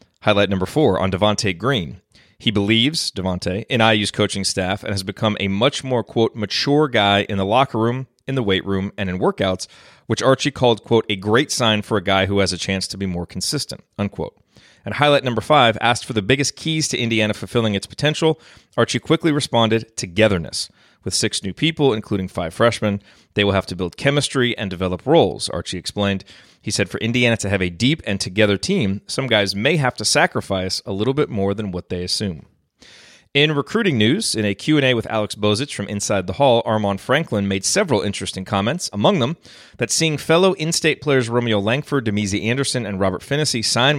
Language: English